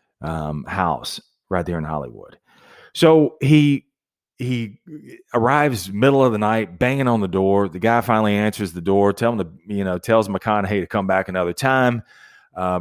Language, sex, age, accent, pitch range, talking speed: English, male, 30-49, American, 90-120 Hz, 175 wpm